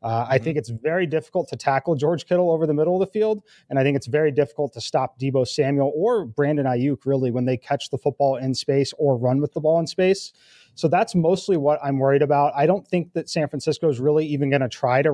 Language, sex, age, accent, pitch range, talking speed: English, male, 30-49, American, 135-165 Hz, 255 wpm